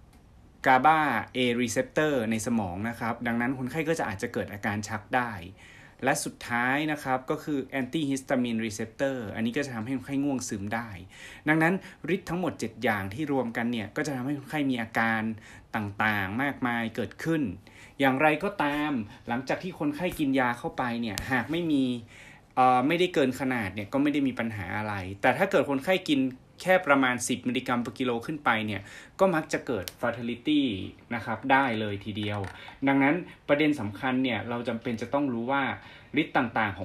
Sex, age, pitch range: male, 20-39, 110-140 Hz